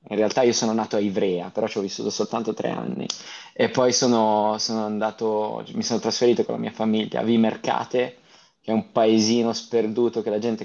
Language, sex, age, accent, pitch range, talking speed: Italian, male, 20-39, native, 105-125 Hz, 205 wpm